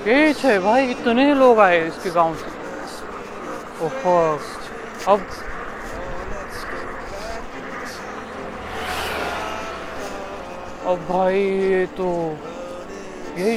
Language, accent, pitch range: Marathi, native, 175-235 Hz